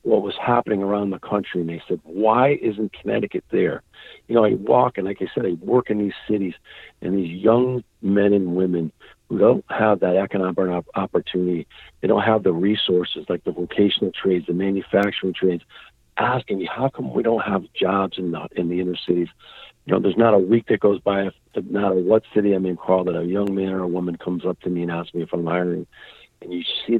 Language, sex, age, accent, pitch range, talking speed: English, male, 50-69, American, 90-105 Hz, 225 wpm